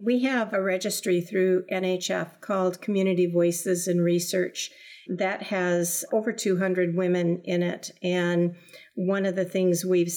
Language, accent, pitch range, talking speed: English, American, 170-190 Hz, 140 wpm